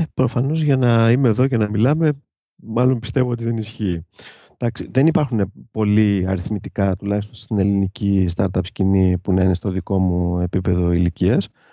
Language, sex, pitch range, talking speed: Greek, male, 95-130 Hz, 155 wpm